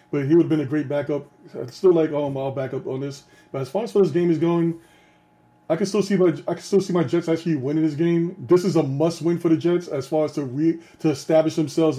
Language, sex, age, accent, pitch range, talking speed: English, male, 20-39, American, 145-180 Hz, 280 wpm